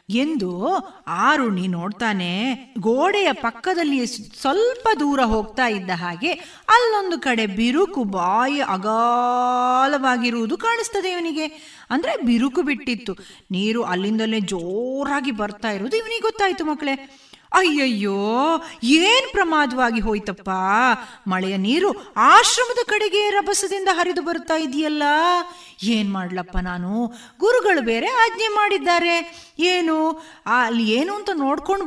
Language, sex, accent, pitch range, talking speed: Kannada, female, native, 220-355 Hz, 95 wpm